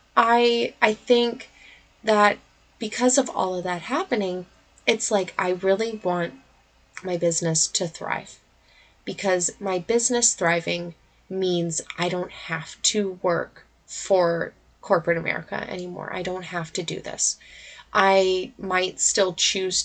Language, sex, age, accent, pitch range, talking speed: English, female, 20-39, American, 175-230 Hz, 130 wpm